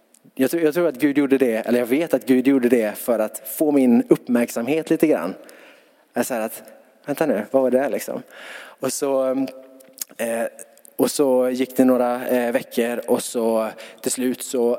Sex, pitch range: male, 115-130 Hz